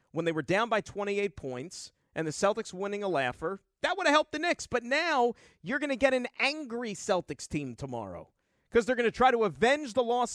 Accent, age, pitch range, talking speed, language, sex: American, 40-59, 165-230 Hz, 225 wpm, English, male